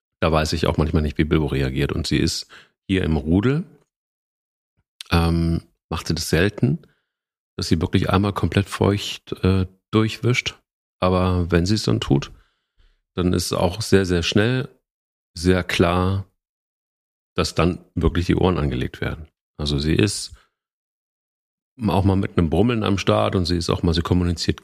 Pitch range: 75-95 Hz